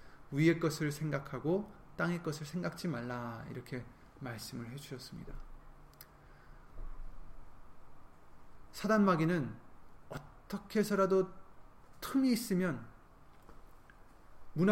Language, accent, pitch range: Korean, native, 130-185 Hz